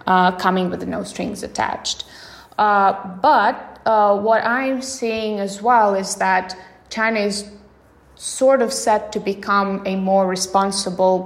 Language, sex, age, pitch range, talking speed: English, female, 20-39, 185-215 Hz, 140 wpm